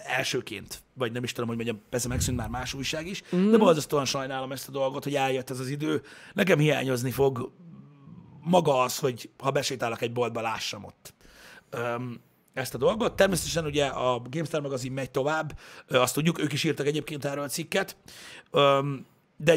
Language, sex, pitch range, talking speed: Hungarian, male, 125-150 Hz, 180 wpm